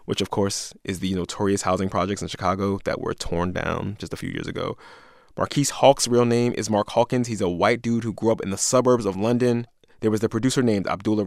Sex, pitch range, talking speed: male, 100-130 Hz, 235 wpm